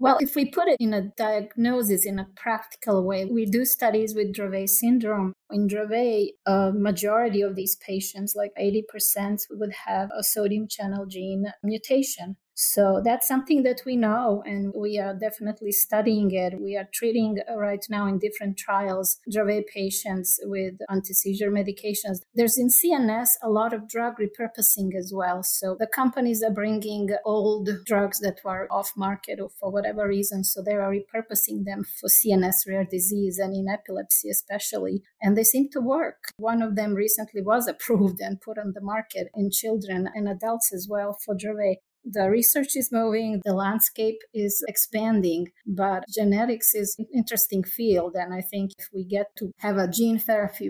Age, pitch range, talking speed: 30-49, 195-220 Hz, 175 wpm